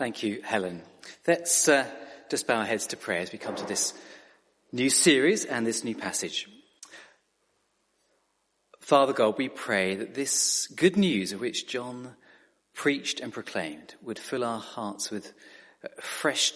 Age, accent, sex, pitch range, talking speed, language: 40-59, British, male, 130-170 Hz, 150 wpm, English